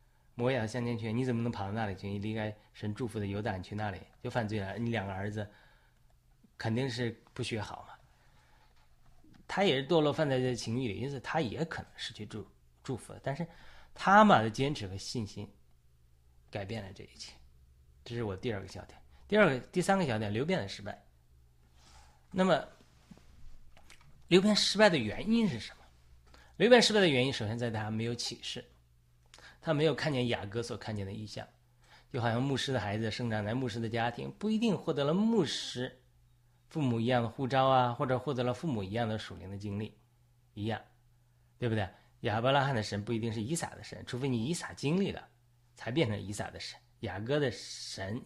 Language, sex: Chinese, male